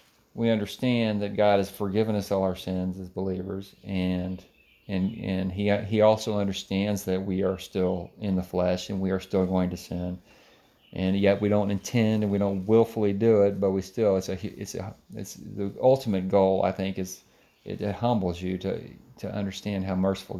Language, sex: English, male